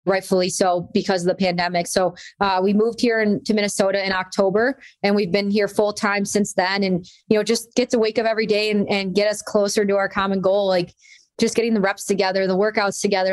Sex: female